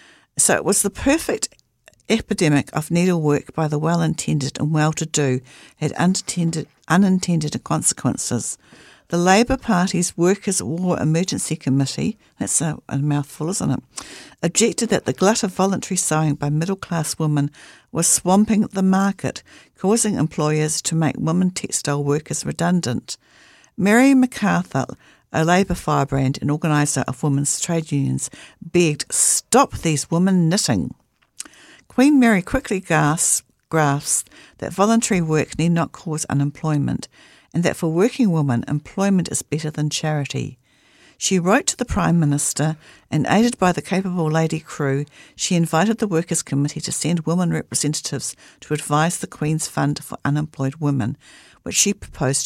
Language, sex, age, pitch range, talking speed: English, female, 60-79, 145-190 Hz, 135 wpm